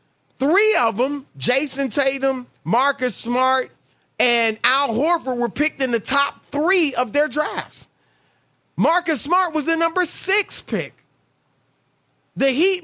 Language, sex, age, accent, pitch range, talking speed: English, male, 30-49, American, 190-275 Hz, 130 wpm